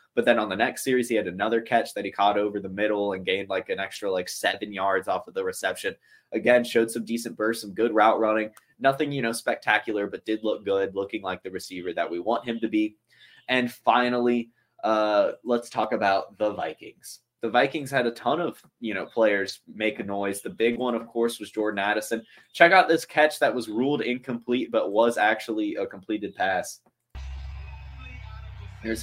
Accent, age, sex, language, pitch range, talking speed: American, 20-39, male, English, 110-140 Hz, 205 wpm